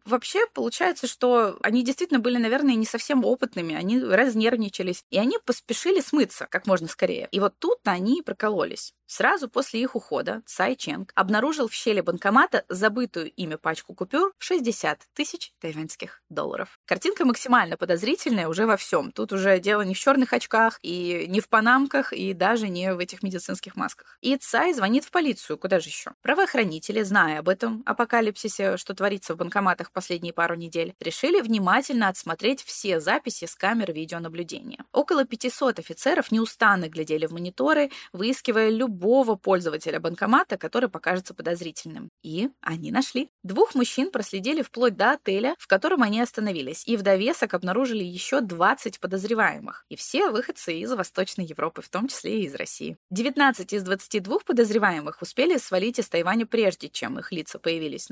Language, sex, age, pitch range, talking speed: Russian, female, 20-39, 185-255 Hz, 160 wpm